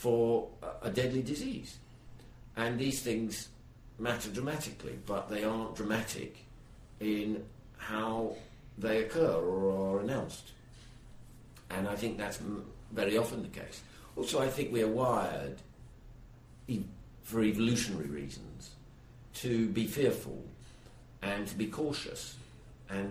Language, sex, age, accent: English, male, 60-79, British